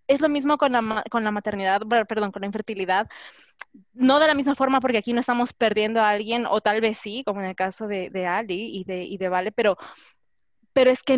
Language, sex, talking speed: Spanish, female, 235 wpm